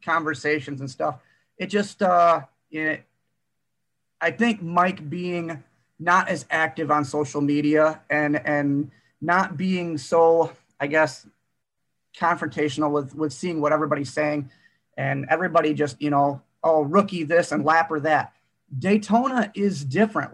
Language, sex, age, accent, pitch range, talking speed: English, male, 30-49, American, 150-180 Hz, 135 wpm